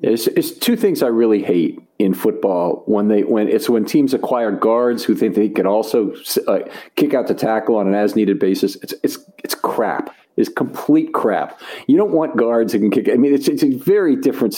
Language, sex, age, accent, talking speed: English, male, 50-69, American, 210 wpm